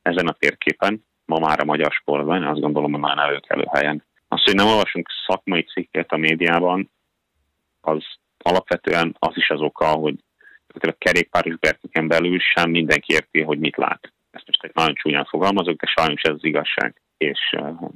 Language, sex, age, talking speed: Hungarian, male, 30-49, 170 wpm